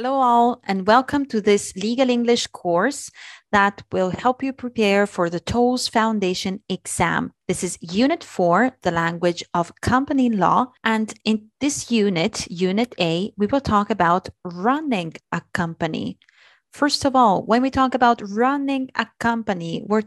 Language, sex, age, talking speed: Italian, female, 30-49, 155 wpm